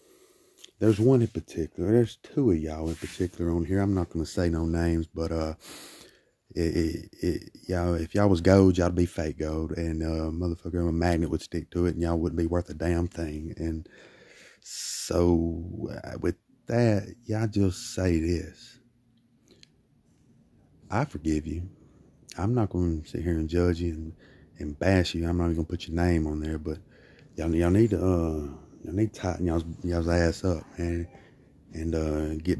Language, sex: English, male